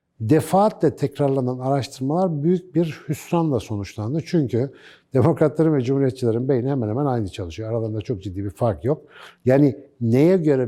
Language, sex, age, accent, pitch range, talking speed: Turkish, male, 60-79, native, 115-155 Hz, 140 wpm